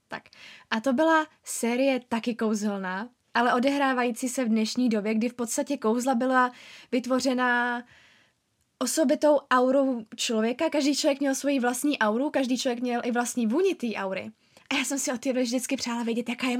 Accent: native